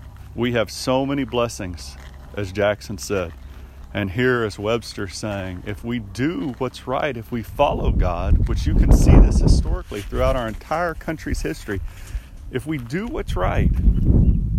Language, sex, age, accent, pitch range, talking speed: English, male, 40-59, American, 90-125 Hz, 155 wpm